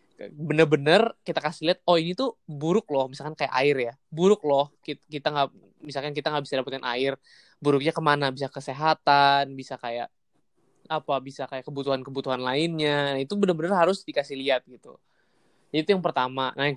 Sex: male